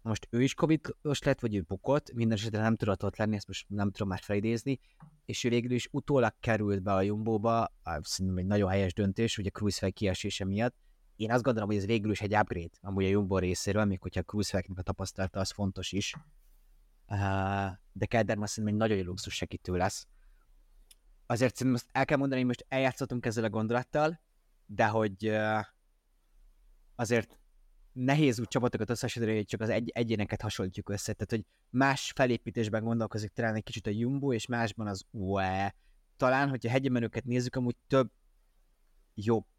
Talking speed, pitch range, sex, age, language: 180 wpm, 100-125 Hz, male, 20-39, Hungarian